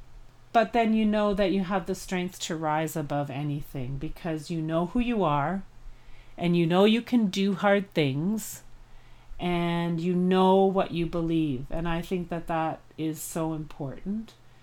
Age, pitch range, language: 40-59, 170-210 Hz, English